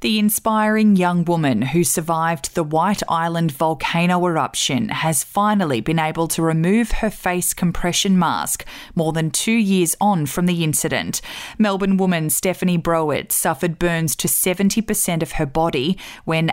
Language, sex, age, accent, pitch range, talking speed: English, female, 20-39, Australian, 160-200 Hz, 150 wpm